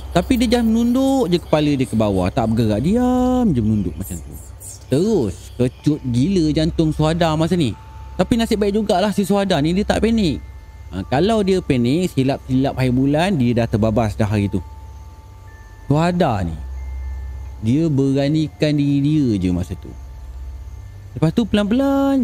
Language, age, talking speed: Malay, 30-49, 155 wpm